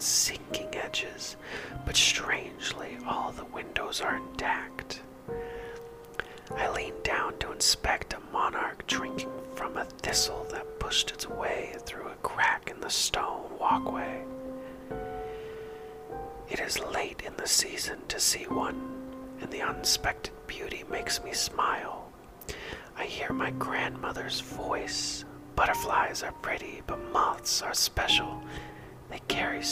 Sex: male